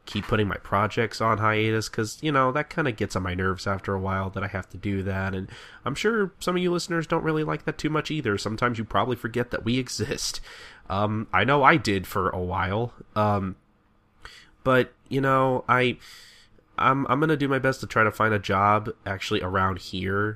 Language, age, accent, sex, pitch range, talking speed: English, 20-39, American, male, 95-115 Hz, 220 wpm